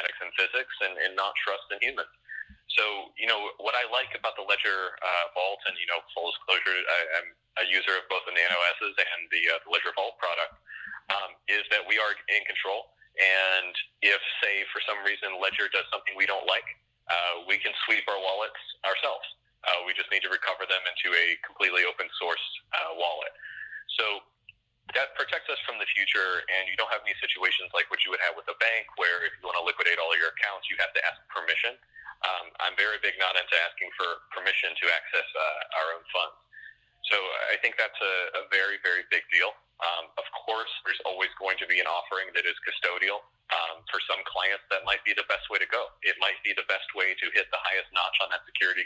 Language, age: English, 30-49